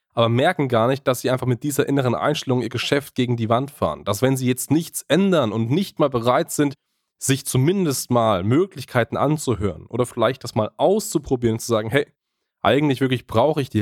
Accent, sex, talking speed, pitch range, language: German, male, 205 wpm, 120-145 Hz, German